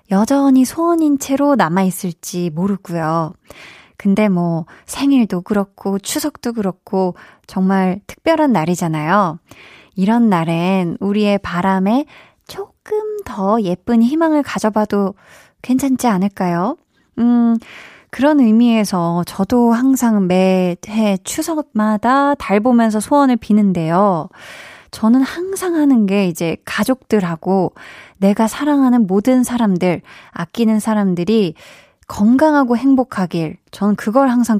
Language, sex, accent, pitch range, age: Korean, female, native, 185-250 Hz, 20-39